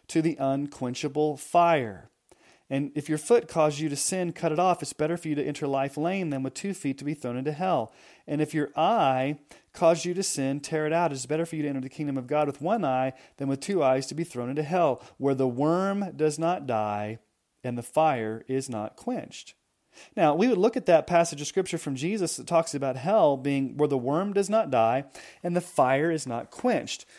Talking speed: 230 wpm